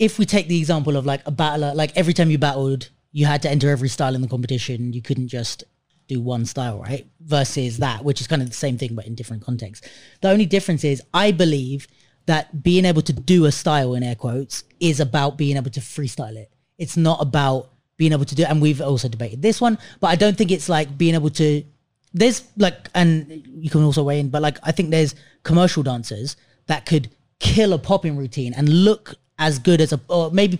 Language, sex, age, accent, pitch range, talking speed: English, female, 30-49, British, 140-175 Hz, 230 wpm